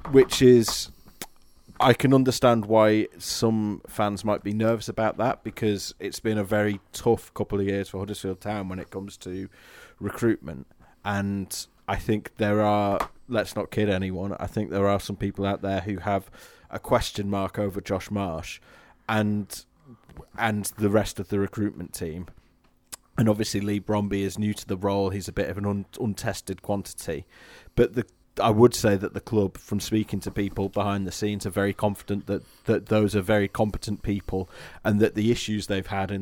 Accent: British